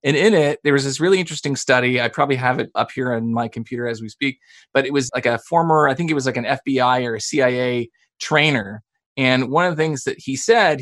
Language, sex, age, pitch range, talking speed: English, male, 30-49, 125-165 Hz, 255 wpm